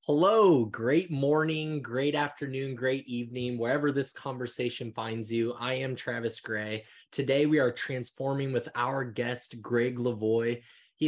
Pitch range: 115-135 Hz